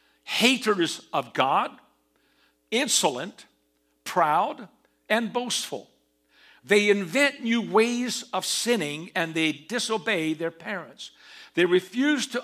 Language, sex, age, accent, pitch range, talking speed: English, male, 60-79, American, 160-225 Hz, 100 wpm